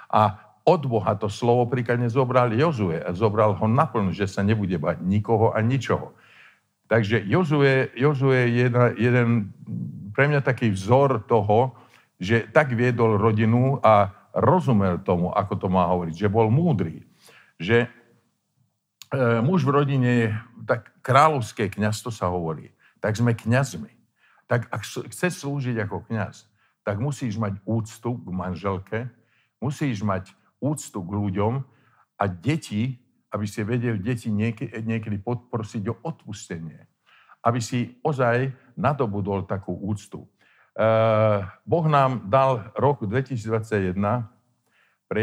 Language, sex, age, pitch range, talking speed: Slovak, male, 50-69, 105-125 Hz, 130 wpm